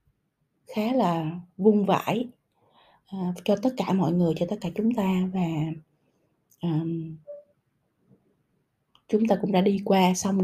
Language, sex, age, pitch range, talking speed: Vietnamese, female, 20-39, 160-200 Hz, 140 wpm